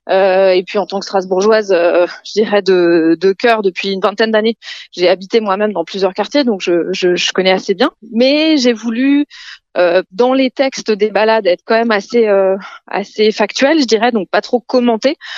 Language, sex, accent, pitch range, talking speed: French, female, French, 190-240 Hz, 205 wpm